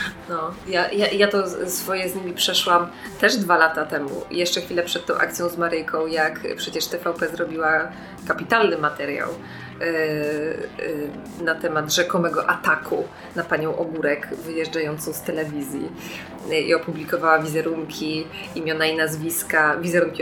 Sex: female